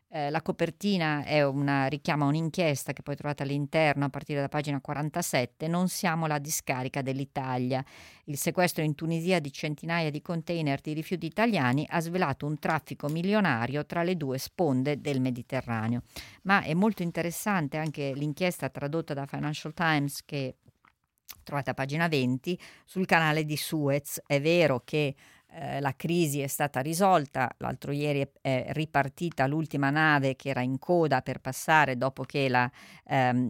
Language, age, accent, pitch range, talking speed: Italian, 40-59, native, 135-165 Hz, 155 wpm